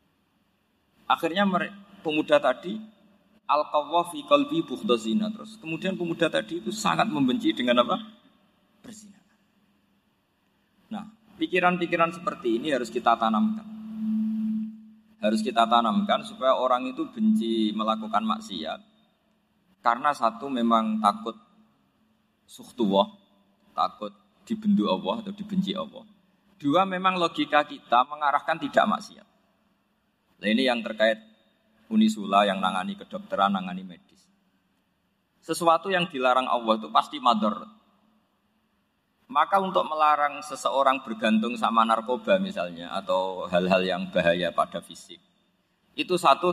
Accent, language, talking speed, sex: native, Indonesian, 105 wpm, male